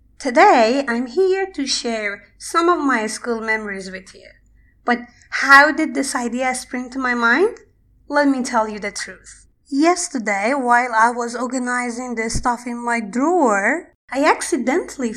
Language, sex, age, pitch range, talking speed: Persian, female, 20-39, 225-280 Hz, 155 wpm